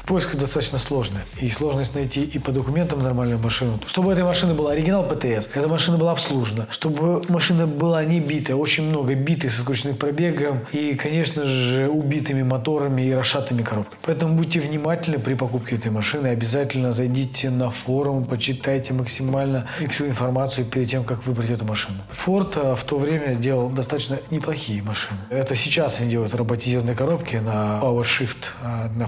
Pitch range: 125-155 Hz